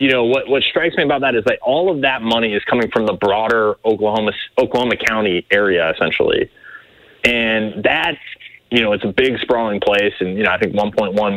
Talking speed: 210 wpm